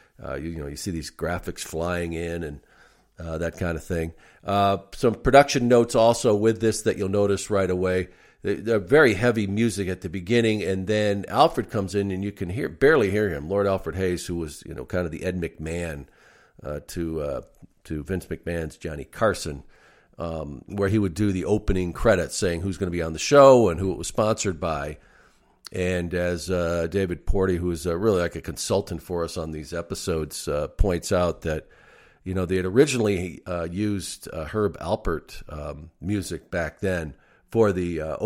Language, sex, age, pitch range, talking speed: English, male, 50-69, 85-100 Hz, 200 wpm